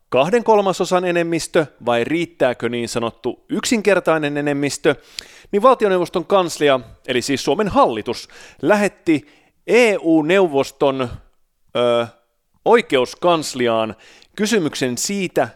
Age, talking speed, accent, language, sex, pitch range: 30-49, 80 wpm, native, Finnish, male, 130-190 Hz